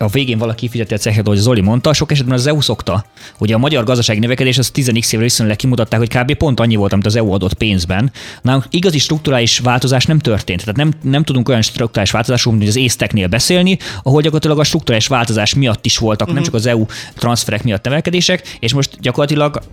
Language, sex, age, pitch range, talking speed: Hungarian, male, 20-39, 105-130 Hz, 205 wpm